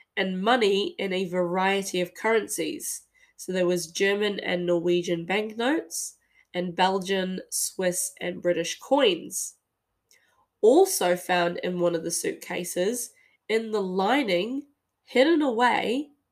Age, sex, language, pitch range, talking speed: 10-29, female, English, 175-225 Hz, 120 wpm